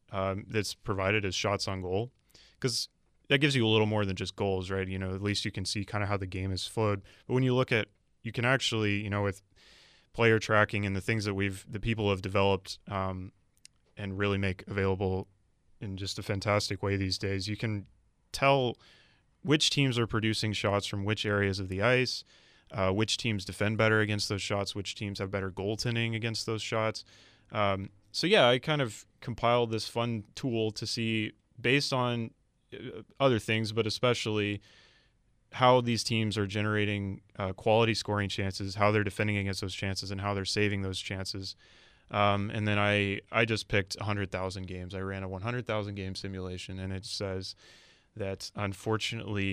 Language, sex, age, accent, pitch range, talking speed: English, male, 20-39, American, 95-110 Hz, 185 wpm